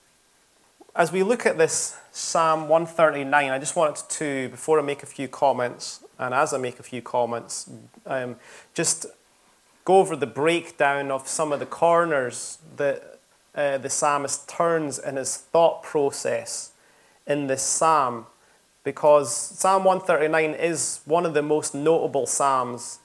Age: 30-49